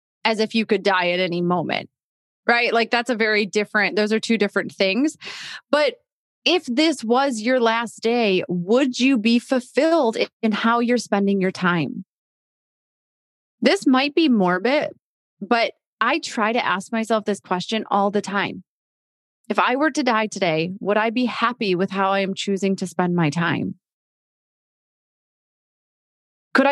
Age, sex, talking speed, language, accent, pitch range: 30-49, female, 160 wpm, English, American, 185-240 Hz